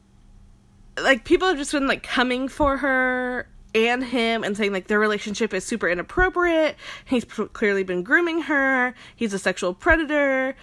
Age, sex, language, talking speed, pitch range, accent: 20-39, female, English, 160 wpm, 200-290 Hz, American